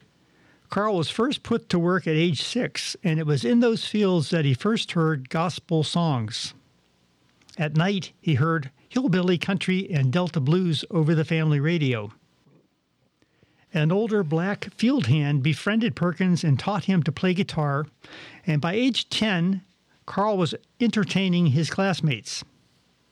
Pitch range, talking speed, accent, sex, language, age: 150-190 Hz, 145 wpm, American, male, English, 50-69